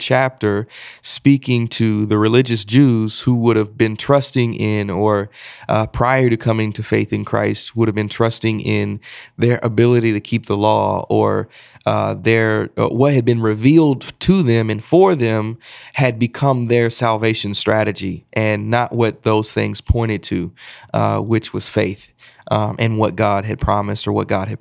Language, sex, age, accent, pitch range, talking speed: English, male, 30-49, American, 105-120 Hz, 170 wpm